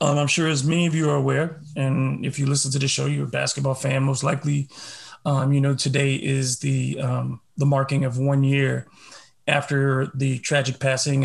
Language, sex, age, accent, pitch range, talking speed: English, male, 30-49, American, 130-150 Hz, 205 wpm